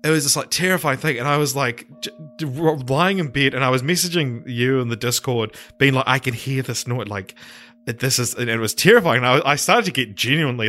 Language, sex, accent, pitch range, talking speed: English, male, Australian, 105-135 Hz, 235 wpm